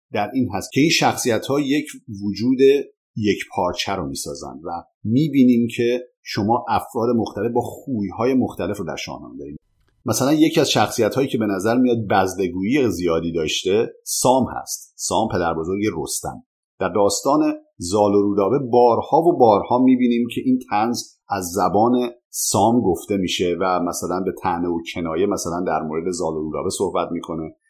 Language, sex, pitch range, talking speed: Persian, male, 100-140 Hz, 155 wpm